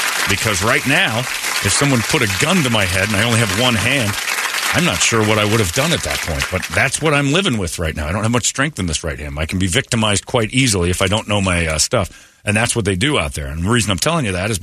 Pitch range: 90-135 Hz